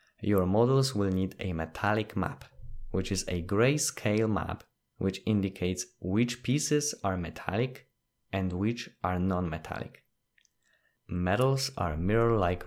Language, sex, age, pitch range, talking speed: English, male, 20-39, 90-115 Hz, 120 wpm